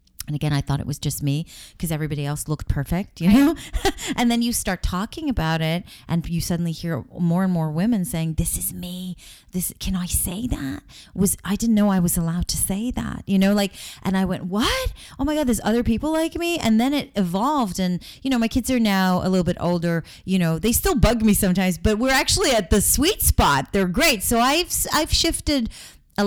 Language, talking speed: English, 230 wpm